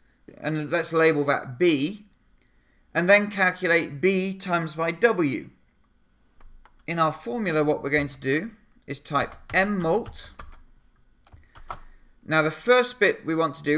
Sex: male